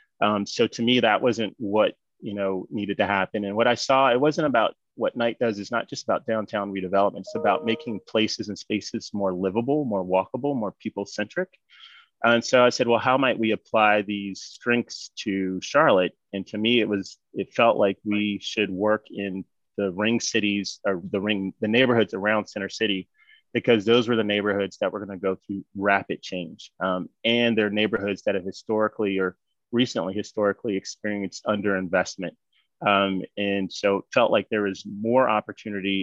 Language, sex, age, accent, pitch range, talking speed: English, male, 30-49, American, 100-115 Hz, 185 wpm